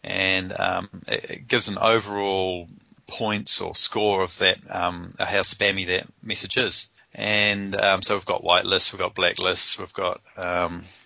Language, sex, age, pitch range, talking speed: English, male, 30-49, 90-105 Hz, 155 wpm